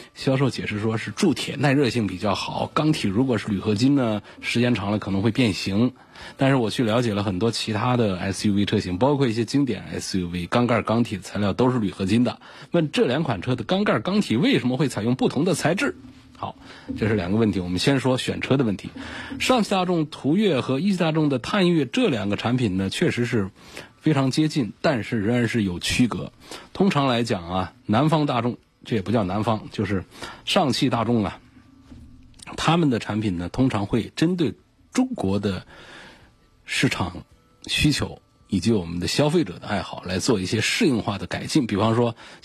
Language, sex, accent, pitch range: Chinese, male, native, 105-140 Hz